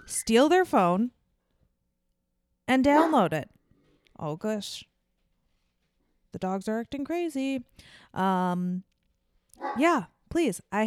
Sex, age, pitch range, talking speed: female, 20-39, 175-265 Hz, 95 wpm